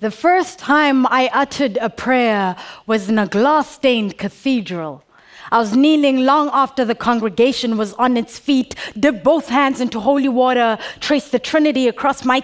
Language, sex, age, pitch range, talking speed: Arabic, female, 20-39, 220-275 Hz, 165 wpm